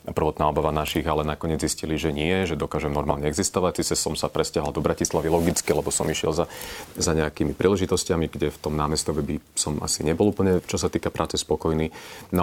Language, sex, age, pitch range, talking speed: Slovak, male, 40-59, 75-85 Hz, 205 wpm